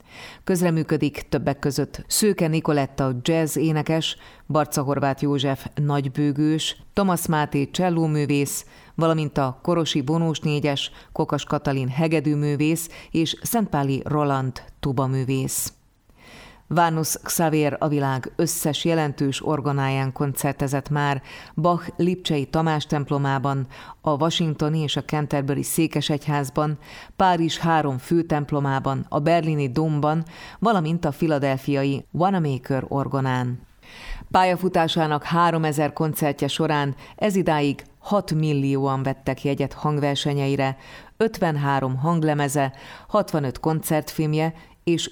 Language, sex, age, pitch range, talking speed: Hungarian, female, 30-49, 140-160 Hz, 95 wpm